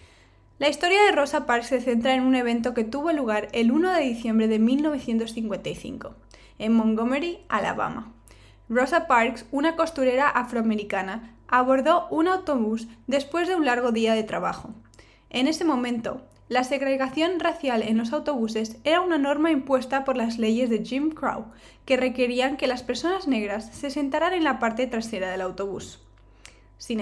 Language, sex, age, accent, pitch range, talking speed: Spanish, female, 10-29, Spanish, 225-285 Hz, 160 wpm